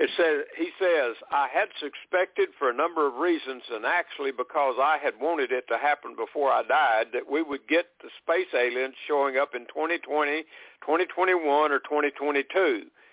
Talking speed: 165 wpm